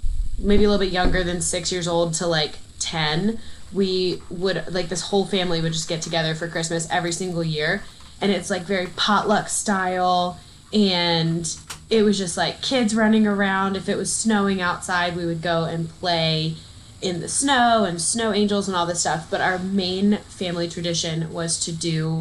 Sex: female